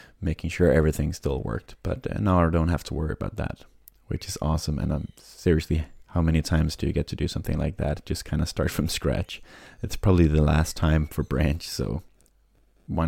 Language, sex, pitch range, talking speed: English, male, 80-90 Hz, 215 wpm